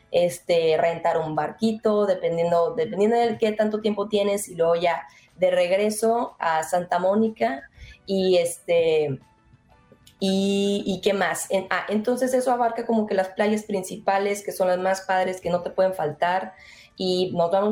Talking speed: 165 wpm